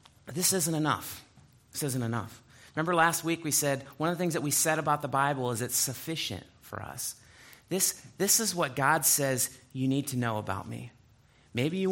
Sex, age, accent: male, 30-49, American